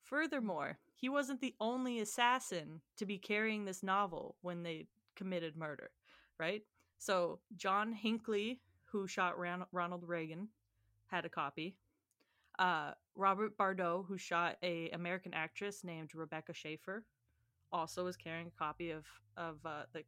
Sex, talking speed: female, 140 wpm